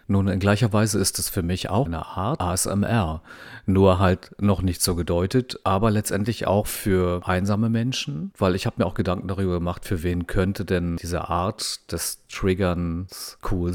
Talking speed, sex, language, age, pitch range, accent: 180 wpm, male, German, 40-59, 90-110 Hz, German